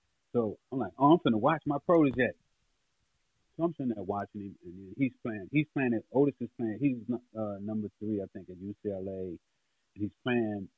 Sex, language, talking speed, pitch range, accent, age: male, English, 195 wpm, 100-120 Hz, American, 30-49